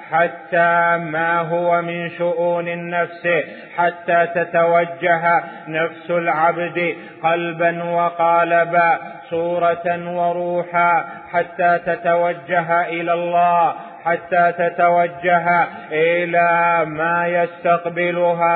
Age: 30-49